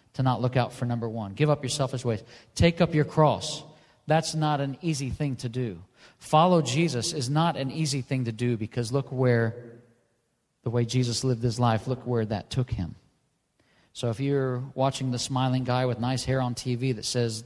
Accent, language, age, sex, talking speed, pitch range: American, English, 40-59, male, 205 wpm, 120-145 Hz